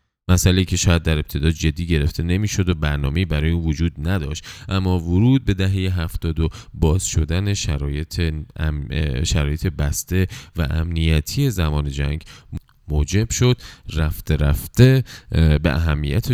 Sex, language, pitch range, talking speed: male, Persian, 75-95 Hz, 130 wpm